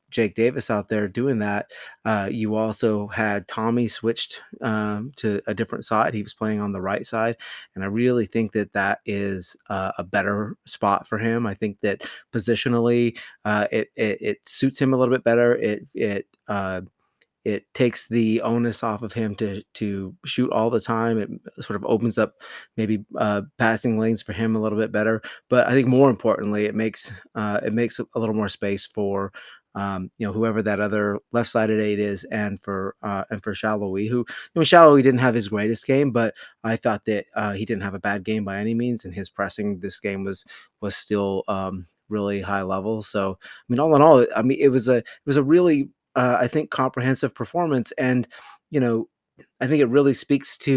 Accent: American